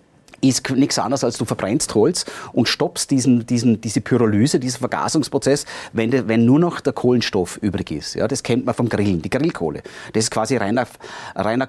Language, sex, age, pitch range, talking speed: German, male, 30-49, 115-140 Hz, 190 wpm